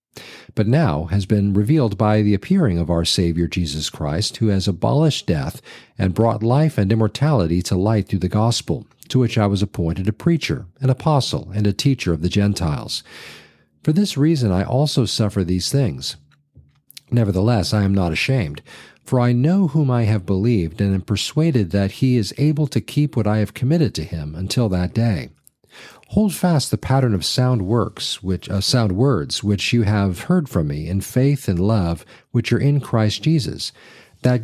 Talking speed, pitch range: 185 wpm, 95-130 Hz